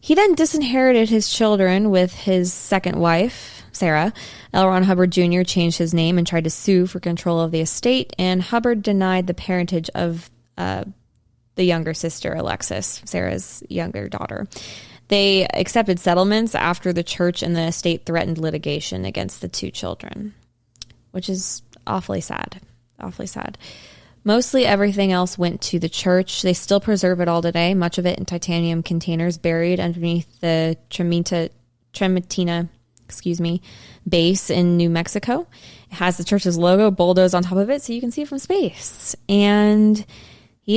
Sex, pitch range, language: female, 165-195 Hz, English